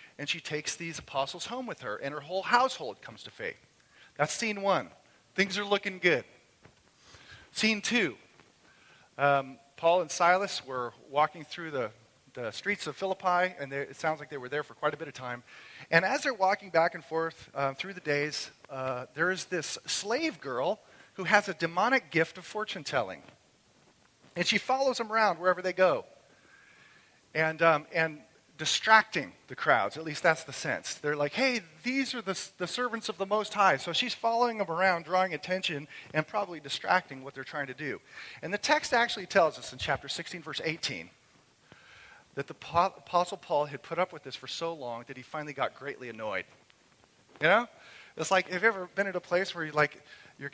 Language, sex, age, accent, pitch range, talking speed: English, male, 40-59, American, 150-195 Hz, 190 wpm